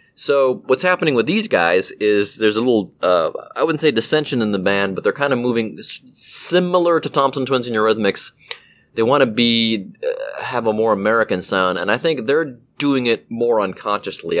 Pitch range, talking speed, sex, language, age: 95-140 Hz, 195 wpm, male, English, 30-49